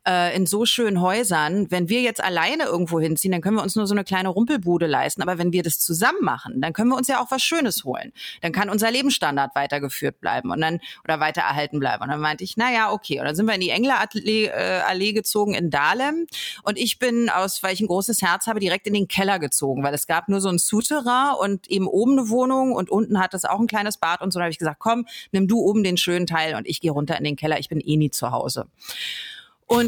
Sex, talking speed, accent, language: female, 255 wpm, German, German